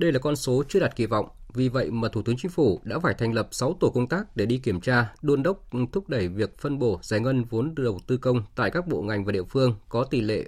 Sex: male